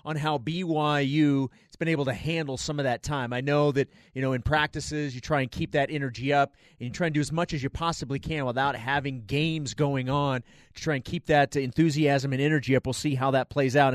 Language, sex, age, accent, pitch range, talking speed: English, male, 30-49, American, 135-170 Hz, 245 wpm